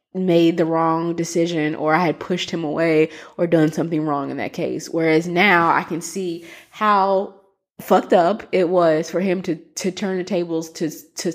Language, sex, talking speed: English, female, 190 wpm